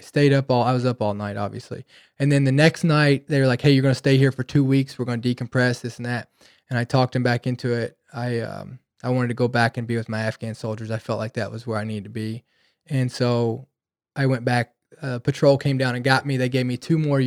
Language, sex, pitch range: English, male, 120-135 Hz